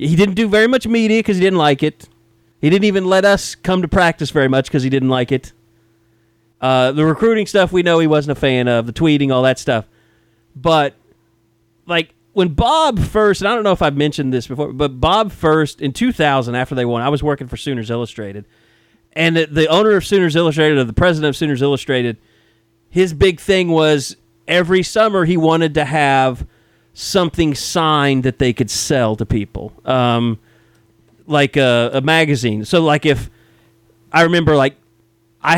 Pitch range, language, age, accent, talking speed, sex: 115-160 Hz, English, 30-49, American, 190 wpm, male